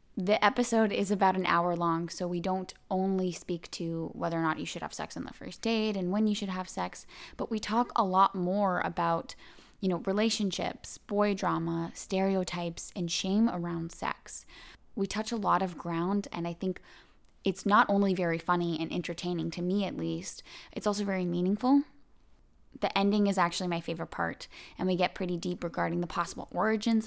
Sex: female